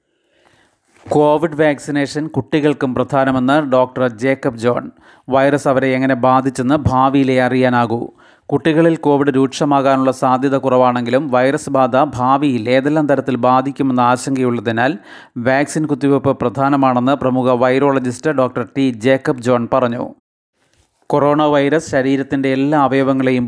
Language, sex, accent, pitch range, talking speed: Malayalam, male, native, 125-140 Hz, 100 wpm